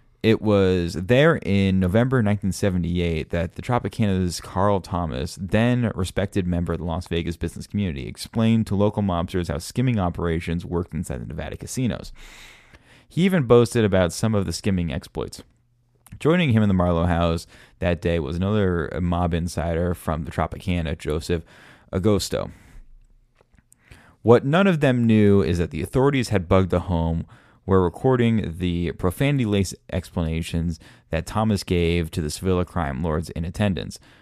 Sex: male